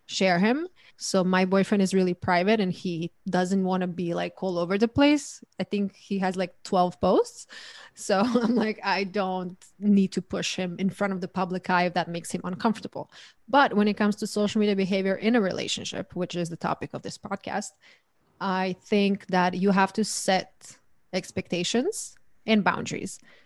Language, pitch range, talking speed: English, 185-210 Hz, 190 wpm